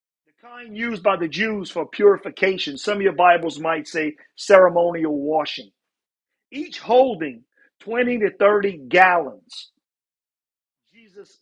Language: English